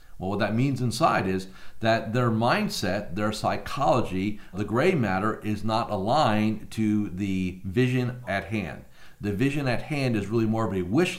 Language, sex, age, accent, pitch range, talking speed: English, male, 50-69, American, 80-115 Hz, 170 wpm